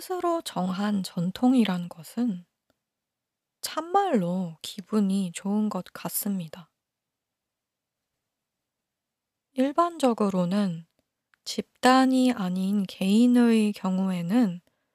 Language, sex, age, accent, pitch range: Korean, female, 20-39, native, 185-235 Hz